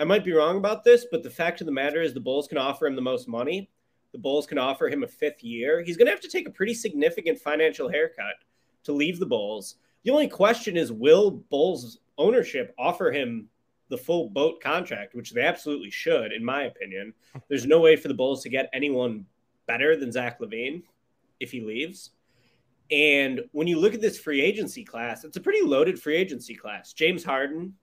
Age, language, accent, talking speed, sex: 20-39, English, American, 210 wpm, male